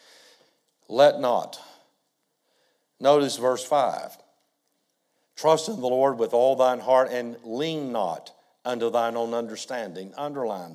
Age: 60-79